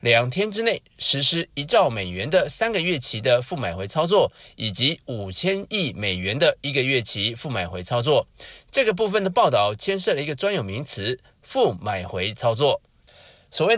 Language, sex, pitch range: Chinese, male, 120-195 Hz